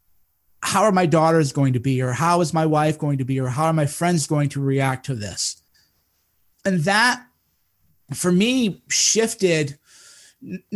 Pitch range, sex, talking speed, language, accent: 145-175 Hz, male, 175 wpm, English, American